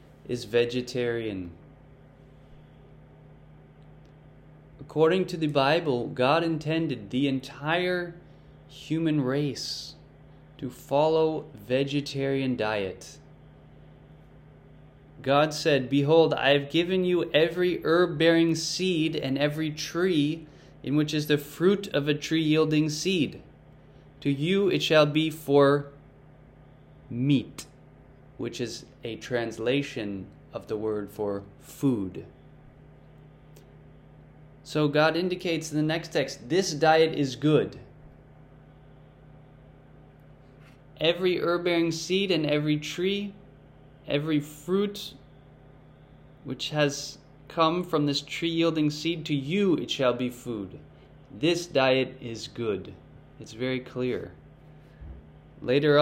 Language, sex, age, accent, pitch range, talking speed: English, male, 20-39, American, 135-160 Hz, 100 wpm